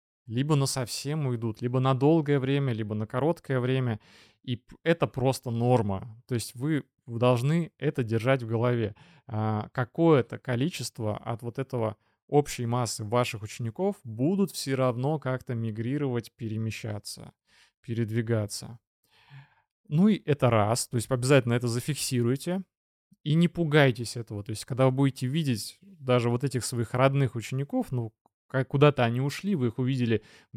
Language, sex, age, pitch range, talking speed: Russian, male, 20-39, 115-140 Hz, 145 wpm